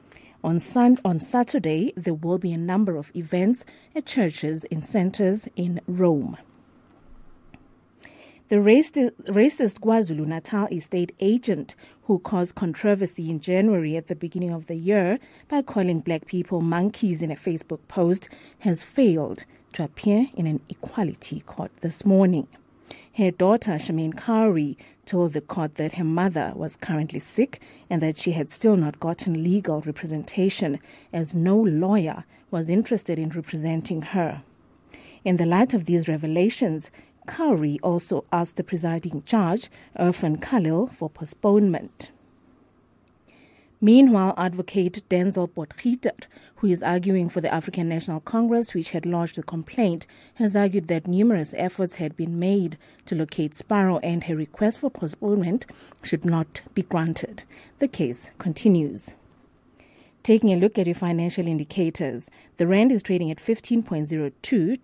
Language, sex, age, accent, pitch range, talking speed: English, female, 30-49, South African, 160-205 Hz, 140 wpm